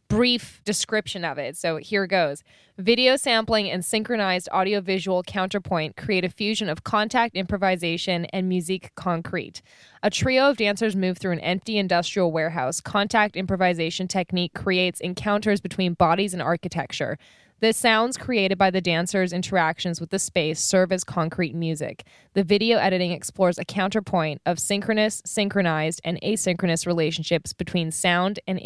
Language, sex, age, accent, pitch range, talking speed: English, female, 10-29, American, 165-200 Hz, 145 wpm